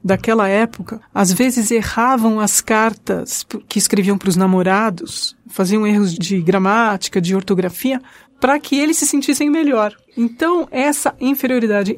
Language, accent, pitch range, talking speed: Portuguese, Brazilian, 205-260 Hz, 135 wpm